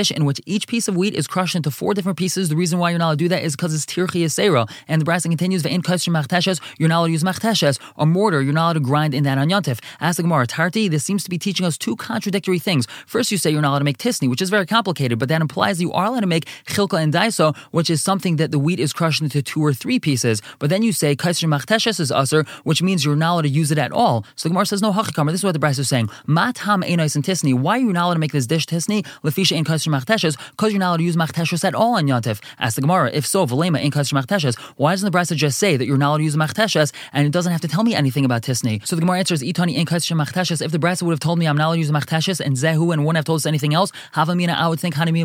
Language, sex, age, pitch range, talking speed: English, male, 20-39, 150-180 Hz, 290 wpm